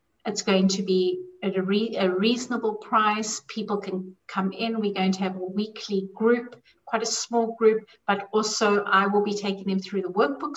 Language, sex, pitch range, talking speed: English, female, 195-225 Hz, 200 wpm